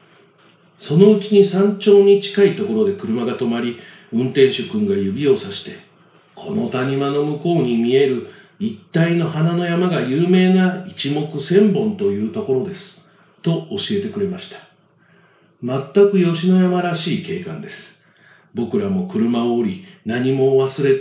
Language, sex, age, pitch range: Japanese, male, 50-69, 150-200 Hz